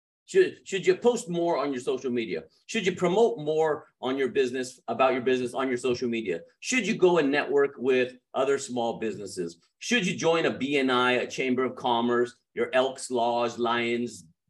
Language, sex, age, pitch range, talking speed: English, male, 40-59, 125-210 Hz, 185 wpm